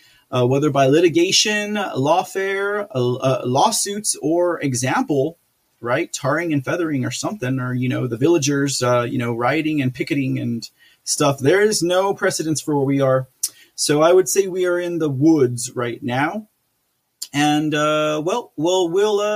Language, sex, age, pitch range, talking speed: English, male, 30-49, 130-160 Hz, 165 wpm